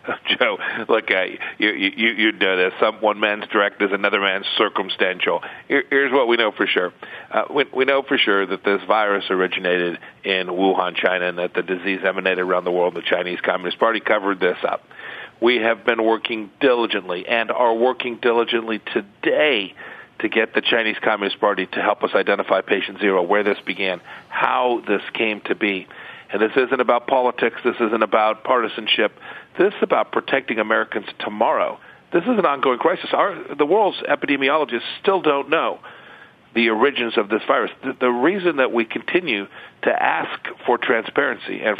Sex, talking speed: male, 180 wpm